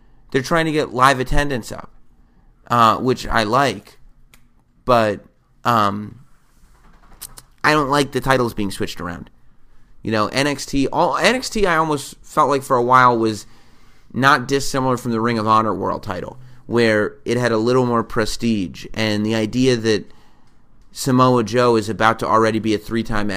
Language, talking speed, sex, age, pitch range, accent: English, 160 wpm, male, 30-49, 105-125 Hz, American